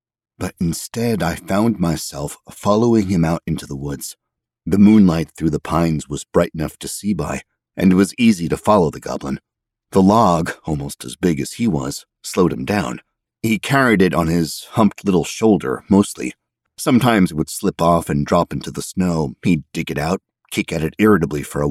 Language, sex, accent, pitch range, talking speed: English, male, American, 80-100 Hz, 195 wpm